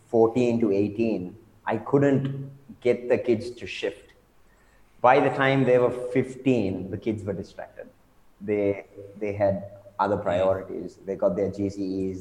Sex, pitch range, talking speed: male, 100-115 Hz, 145 wpm